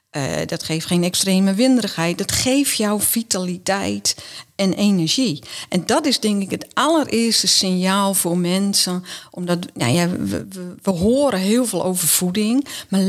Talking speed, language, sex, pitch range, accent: 155 wpm, Dutch, female, 175-220 Hz, Dutch